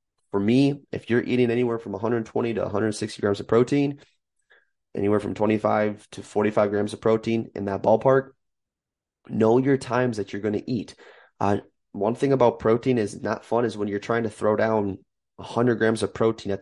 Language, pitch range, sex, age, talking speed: English, 105-120 Hz, male, 20-39, 185 wpm